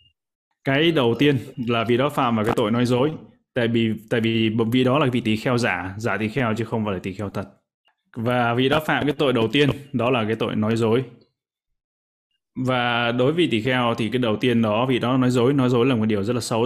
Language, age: Vietnamese, 20-39